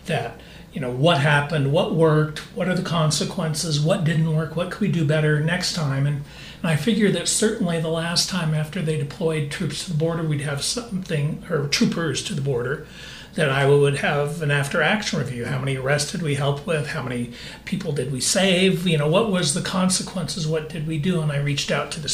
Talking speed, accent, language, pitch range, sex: 220 wpm, American, English, 145-170 Hz, male